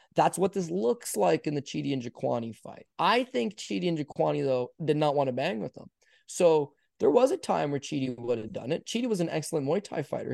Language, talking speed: English, 245 wpm